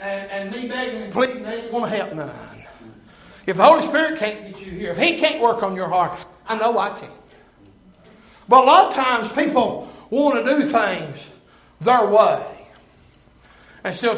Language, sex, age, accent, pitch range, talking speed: English, male, 60-79, American, 220-270 Hz, 185 wpm